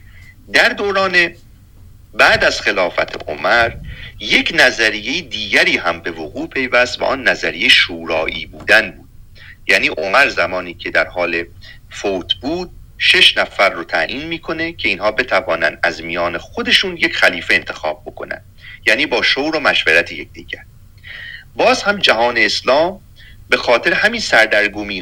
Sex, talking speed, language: male, 135 wpm, Persian